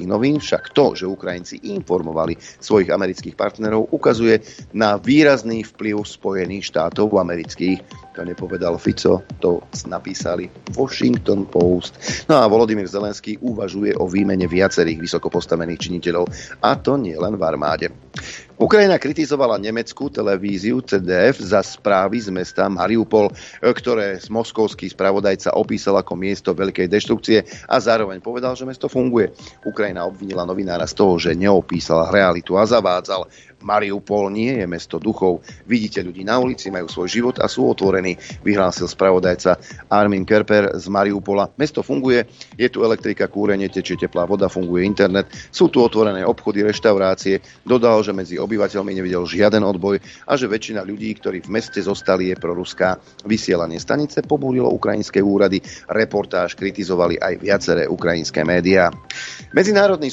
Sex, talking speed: male, 140 wpm